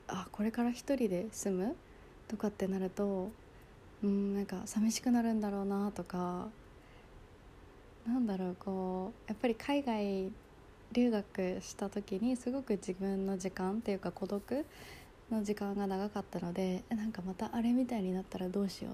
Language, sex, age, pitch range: Japanese, female, 20-39, 185-225 Hz